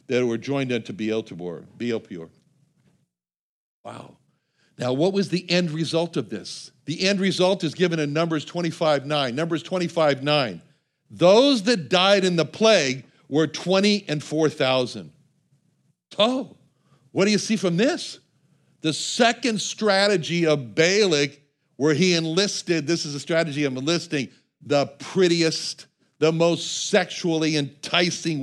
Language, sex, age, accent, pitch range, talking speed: English, male, 60-79, American, 145-190 Hz, 130 wpm